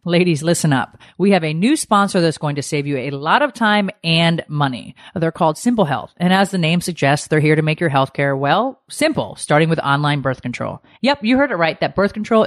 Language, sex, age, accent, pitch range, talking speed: English, female, 30-49, American, 145-195 Hz, 235 wpm